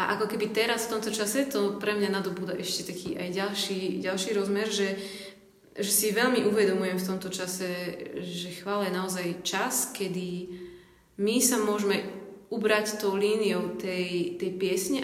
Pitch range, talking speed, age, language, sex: 180-205 Hz, 160 wpm, 20-39, Slovak, female